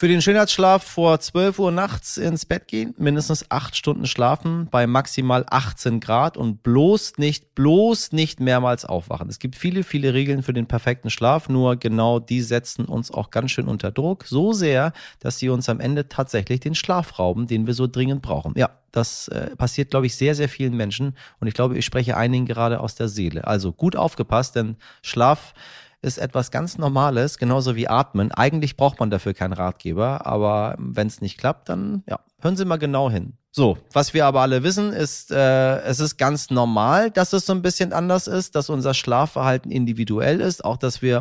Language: German